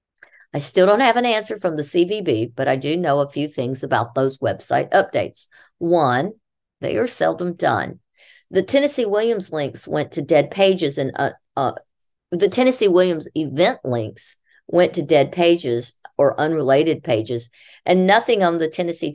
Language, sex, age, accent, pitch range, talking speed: English, female, 50-69, American, 145-190 Hz, 165 wpm